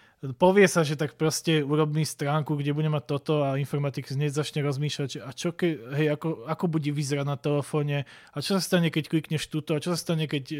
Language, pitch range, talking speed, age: Slovak, 145-175 Hz, 205 wpm, 20-39